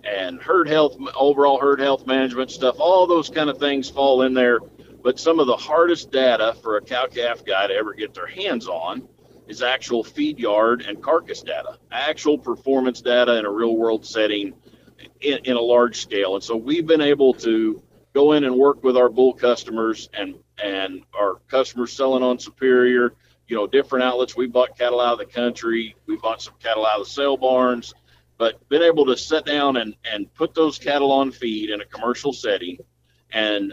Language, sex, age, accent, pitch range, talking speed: English, male, 50-69, American, 115-145 Hz, 195 wpm